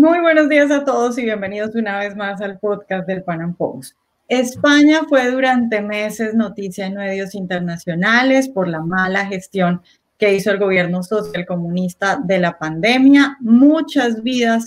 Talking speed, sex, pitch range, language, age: 155 wpm, female, 180-230 Hz, Spanish, 30-49